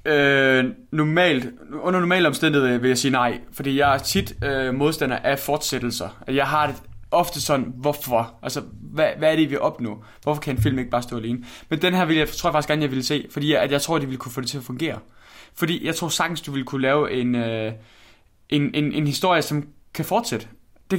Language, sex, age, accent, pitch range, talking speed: Danish, male, 20-39, native, 125-165 Hz, 245 wpm